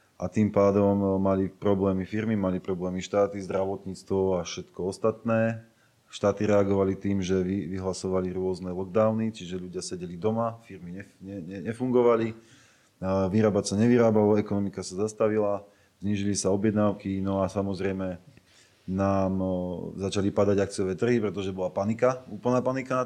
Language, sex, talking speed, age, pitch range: Slovak, male, 130 wpm, 30-49, 95-115 Hz